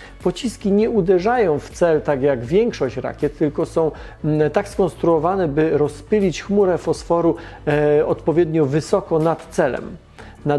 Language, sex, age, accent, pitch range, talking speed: Polish, male, 40-59, native, 145-180 Hz, 125 wpm